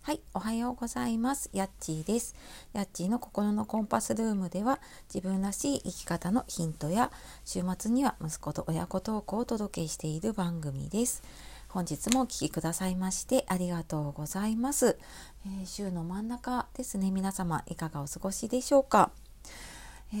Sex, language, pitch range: female, Japanese, 165-220 Hz